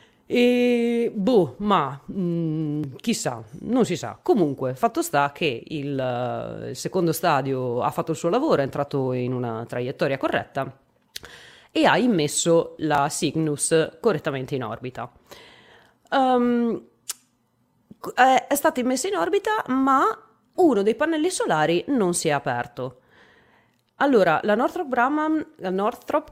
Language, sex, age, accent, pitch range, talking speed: Italian, female, 30-49, native, 140-200 Hz, 120 wpm